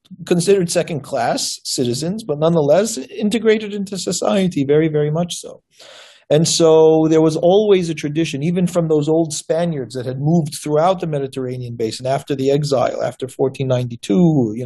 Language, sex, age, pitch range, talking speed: English, male, 40-59, 130-170 Hz, 150 wpm